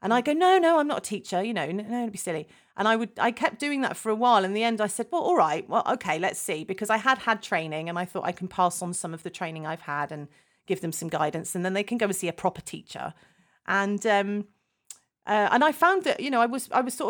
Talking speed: 300 wpm